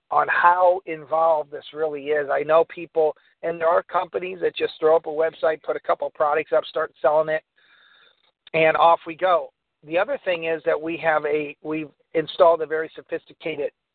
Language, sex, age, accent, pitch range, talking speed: English, male, 50-69, American, 150-190 Hz, 195 wpm